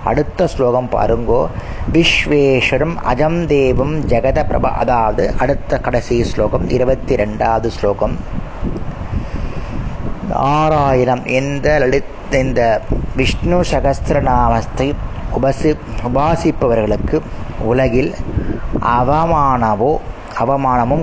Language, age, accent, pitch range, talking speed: Tamil, 30-49, native, 120-155 Hz, 65 wpm